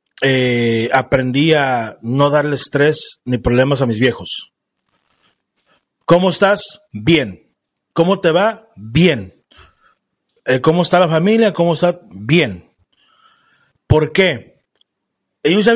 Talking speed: 115 wpm